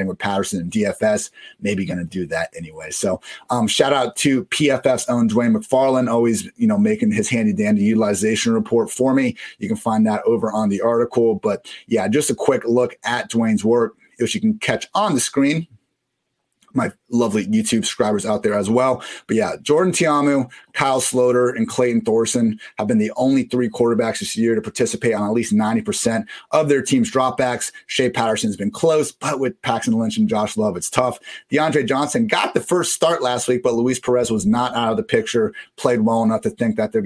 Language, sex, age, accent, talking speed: English, male, 30-49, American, 205 wpm